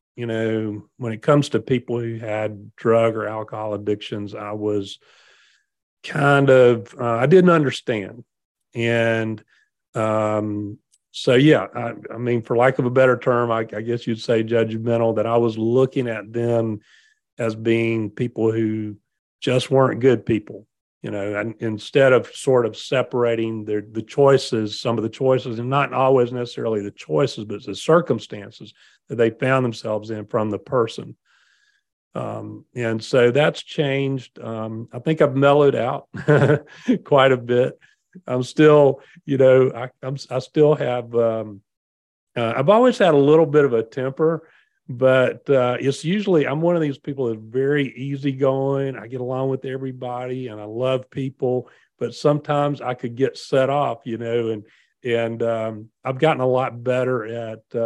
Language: English